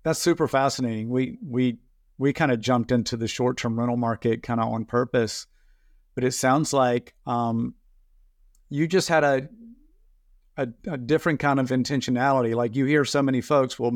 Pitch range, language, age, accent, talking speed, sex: 115-140 Hz, English, 50-69, American, 175 wpm, male